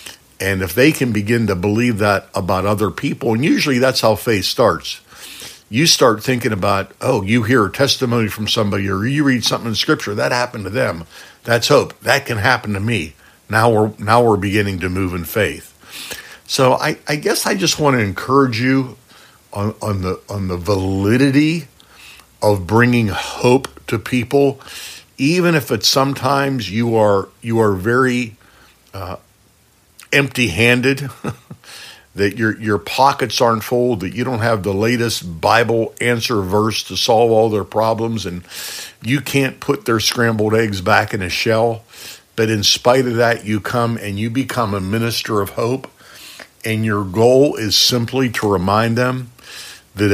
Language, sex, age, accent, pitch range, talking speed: English, male, 50-69, American, 100-125 Hz, 170 wpm